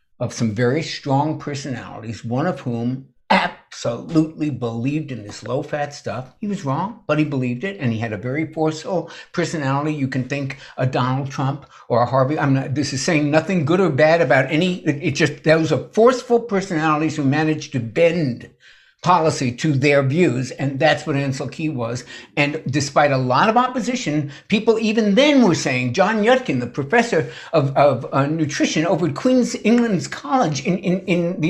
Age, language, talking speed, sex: 60-79, English, 185 wpm, male